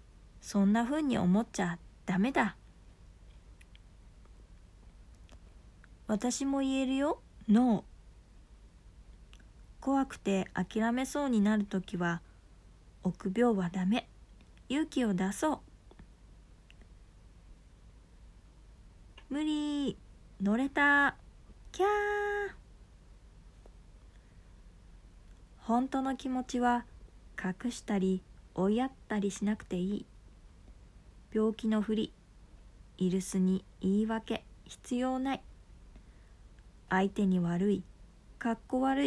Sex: female